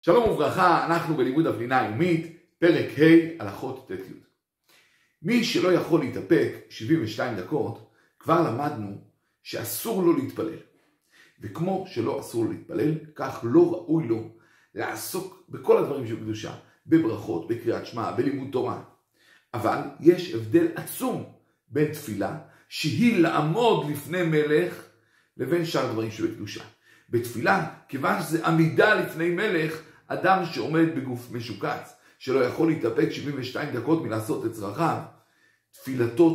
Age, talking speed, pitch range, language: 50-69, 120 wpm, 120-165 Hz, Hebrew